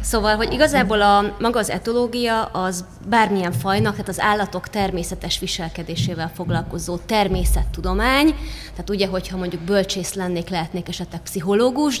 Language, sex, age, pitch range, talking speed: Hungarian, female, 20-39, 175-205 Hz, 130 wpm